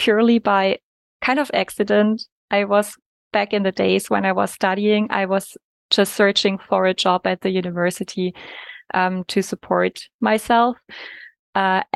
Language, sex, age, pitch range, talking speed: English, female, 20-39, 180-205 Hz, 150 wpm